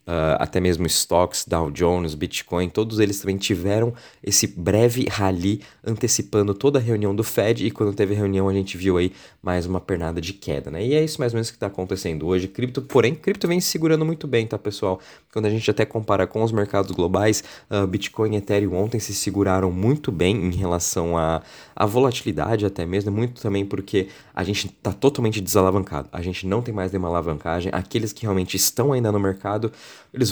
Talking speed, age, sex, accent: 195 wpm, 20-39, male, Brazilian